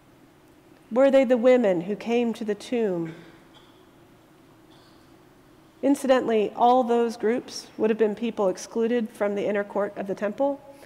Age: 40-59